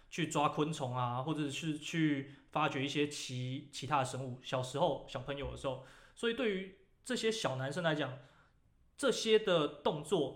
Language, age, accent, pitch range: Chinese, 20-39, native, 135-170 Hz